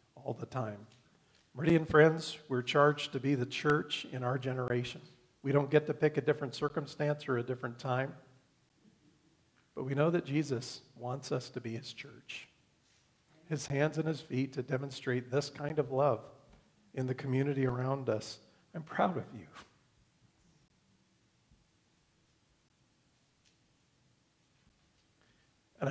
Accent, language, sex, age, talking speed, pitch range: American, English, male, 50-69, 135 wpm, 125-150 Hz